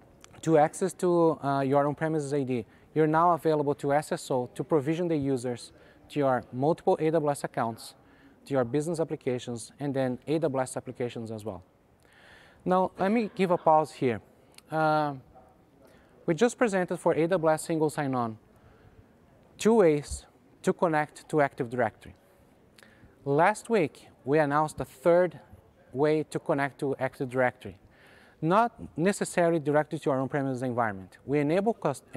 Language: English